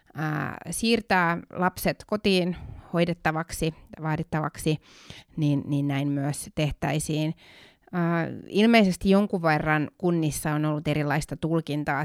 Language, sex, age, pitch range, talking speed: Finnish, female, 30-49, 150-175 Hz, 90 wpm